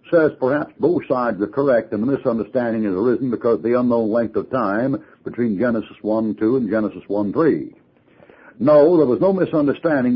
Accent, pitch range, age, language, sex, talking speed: American, 105-130 Hz, 60-79, English, male, 170 wpm